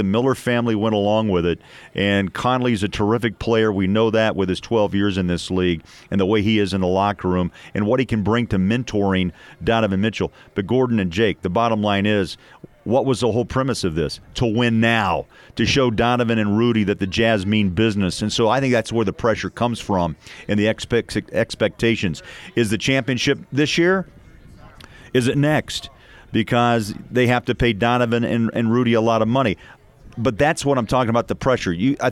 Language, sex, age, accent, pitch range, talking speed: English, male, 40-59, American, 100-125 Hz, 205 wpm